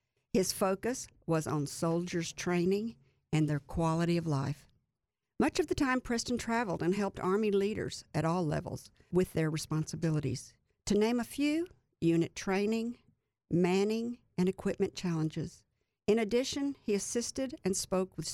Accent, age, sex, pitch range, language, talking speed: American, 60-79, female, 155-200 Hz, English, 145 wpm